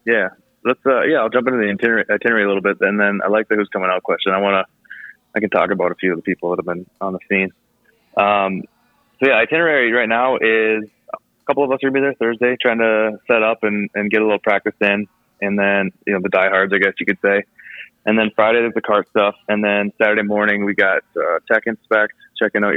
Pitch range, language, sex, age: 95-110 Hz, English, male, 20-39